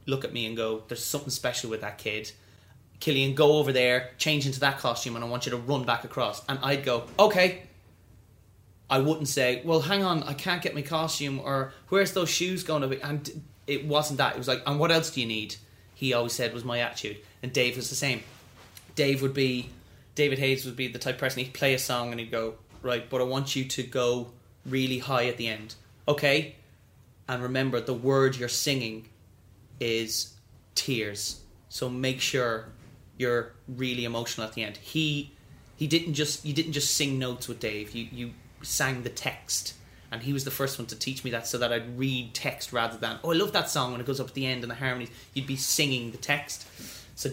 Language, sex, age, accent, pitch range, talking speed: English, male, 20-39, Irish, 115-140 Hz, 220 wpm